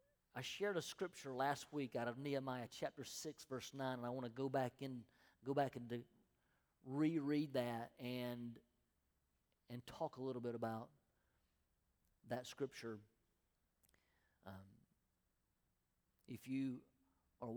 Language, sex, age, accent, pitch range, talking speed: English, male, 40-59, American, 115-135 Hz, 130 wpm